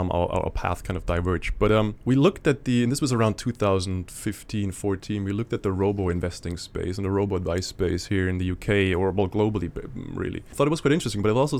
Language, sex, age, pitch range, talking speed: English, male, 20-39, 90-110 Hz, 240 wpm